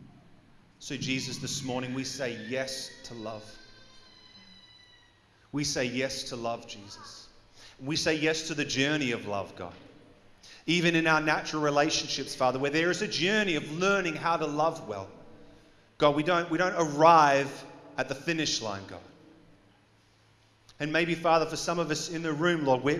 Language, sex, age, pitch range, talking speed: English, male, 30-49, 110-155 Hz, 165 wpm